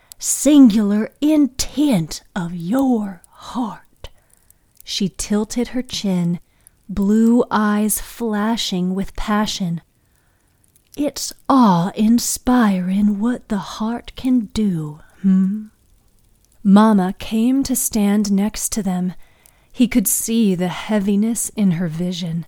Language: English